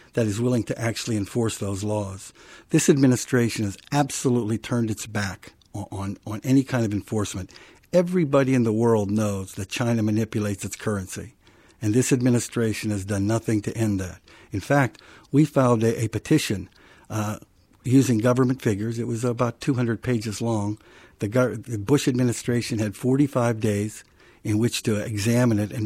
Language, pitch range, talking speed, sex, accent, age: English, 105-125 Hz, 160 wpm, male, American, 60-79